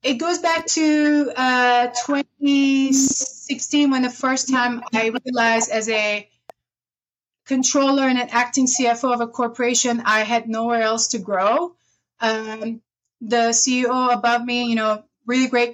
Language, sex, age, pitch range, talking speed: English, female, 30-49, 230-275 Hz, 140 wpm